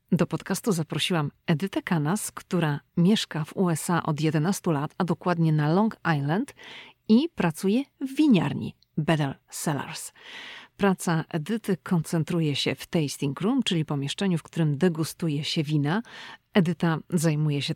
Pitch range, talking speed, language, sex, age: 155-195 Hz, 135 wpm, Polish, female, 40-59